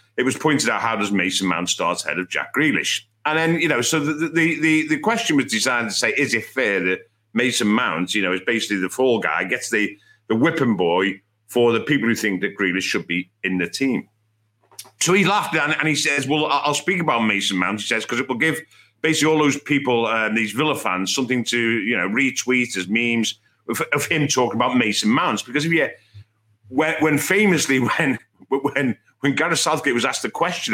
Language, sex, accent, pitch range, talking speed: English, male, British, 110-155 Hz, 220 wpm